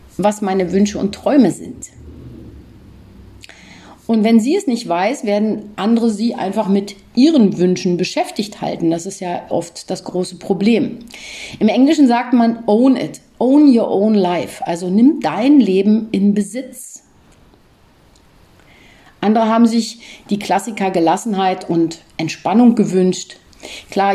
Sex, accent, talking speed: female, German, 135 wpm